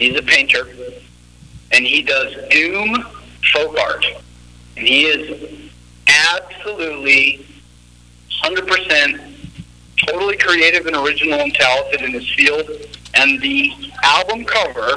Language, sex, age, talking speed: English, male, 50-69, 110 wpm